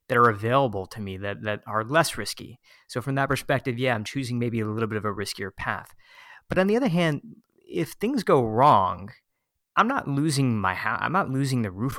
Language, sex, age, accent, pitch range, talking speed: English, male, 30-49, American, 110-140 Hz, 220 wpm